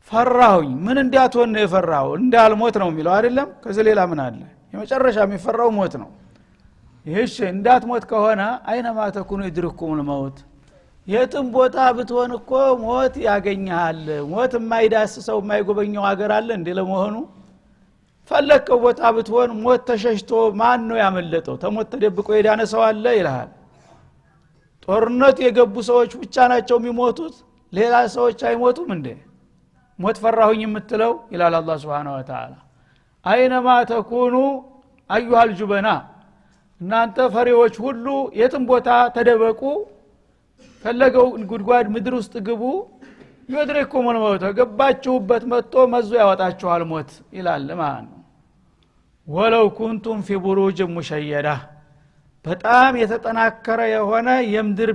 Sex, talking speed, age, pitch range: male, 105 wpm, 60-79, 195-245 Hz